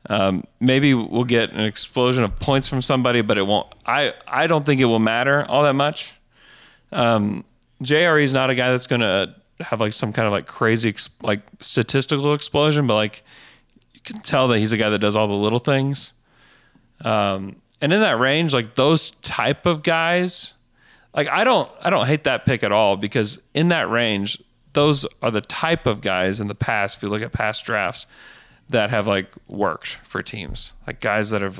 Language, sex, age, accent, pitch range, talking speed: English, male, 30-49, American, 105-140 Hz, 200 wpm